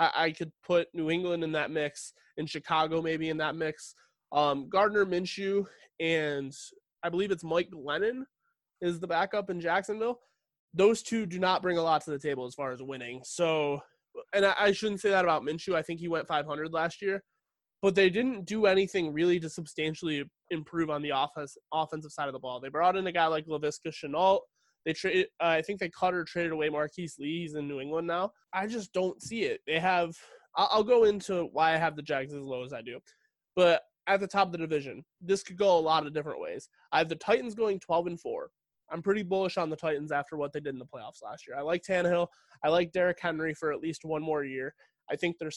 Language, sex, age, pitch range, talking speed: English, male, 20-39, 155-195 Hz, 230 wpm